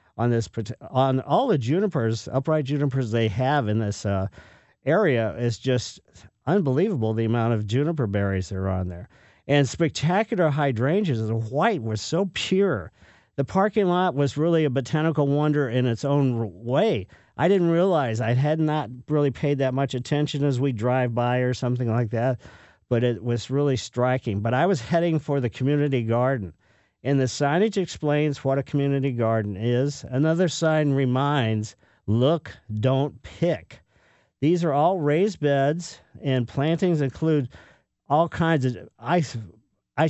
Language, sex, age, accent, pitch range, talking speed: English, male, 50-69, American, 115-155 Hz, 160 wpm